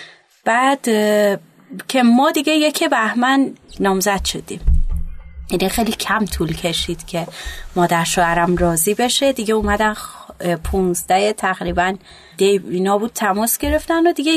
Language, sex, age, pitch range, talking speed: Persian, female, 30-49, 175-230 Hz, 120 wpm